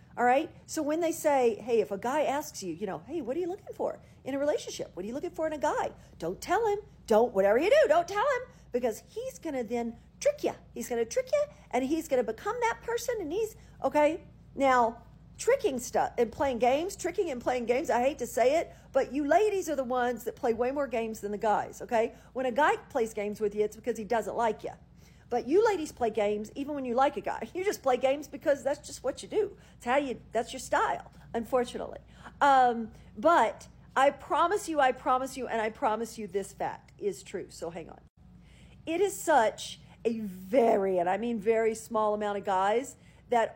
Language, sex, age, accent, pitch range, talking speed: English, female, 50-69, American, 225-300 Hz, 225 wpm